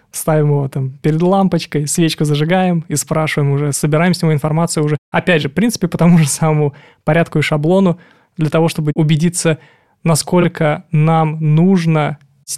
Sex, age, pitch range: male, 20-39, 150-165 Hz